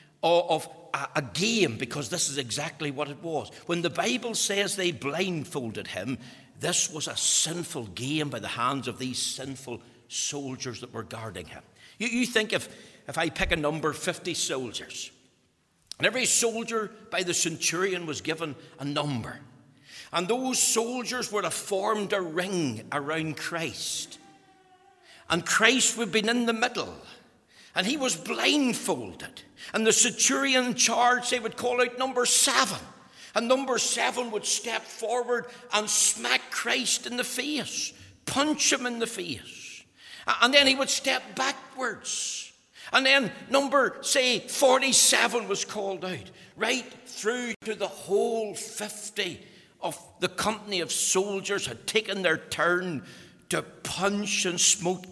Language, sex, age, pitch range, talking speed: English, male, 60-79, 160-240 Hz, 150 wpm